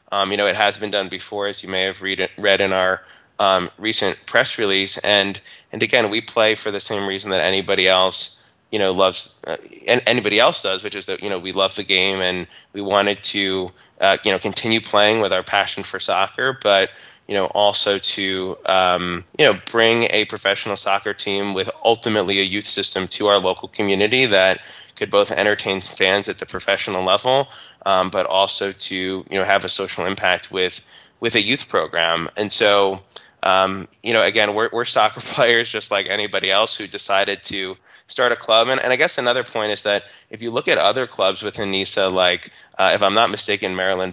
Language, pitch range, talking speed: English, 95-105 Hz, 205 wpm